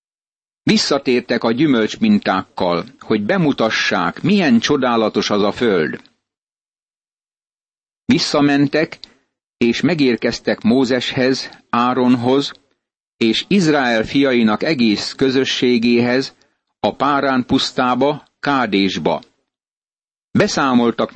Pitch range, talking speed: 115-145 Hz, 70 wpm